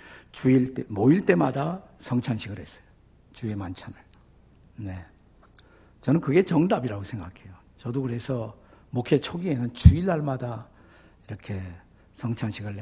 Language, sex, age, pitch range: Korean, male, 60-79, 105-135 Hz